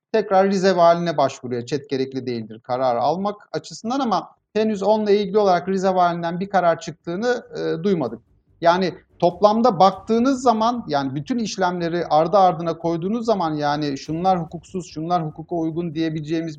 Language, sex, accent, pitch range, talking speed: Turkish, male, native, 150-195 Hz, 140 wpm